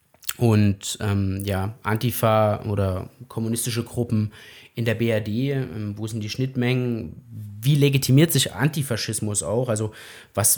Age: 20-39